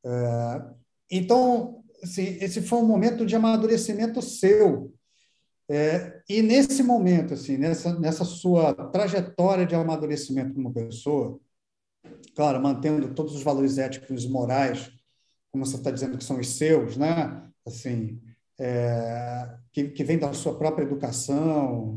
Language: Portuguese